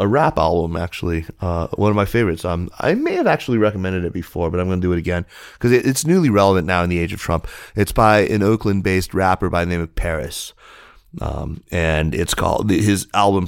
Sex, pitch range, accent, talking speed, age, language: male, 80-95 Hz, American, 225 wpm, 30-49, English